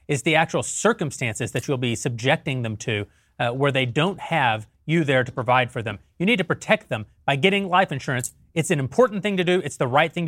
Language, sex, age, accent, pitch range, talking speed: English, male, 30-49, American, 145-185 Hz, 235 wpm